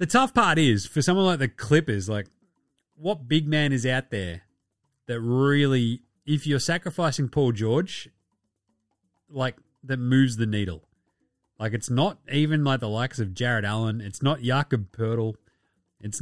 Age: 30-49